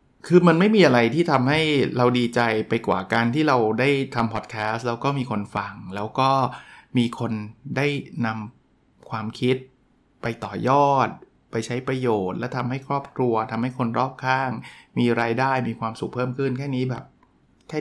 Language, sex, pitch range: Thai, male, 120-145 Hz